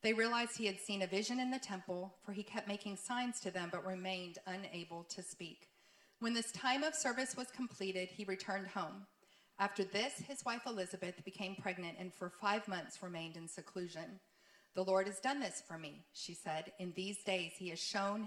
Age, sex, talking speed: 40-59, female, 200 wpm